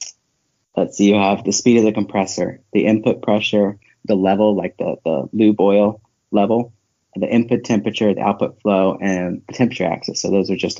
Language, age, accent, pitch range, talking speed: English, 30-49, American, 100-115 Hz, 190 wpm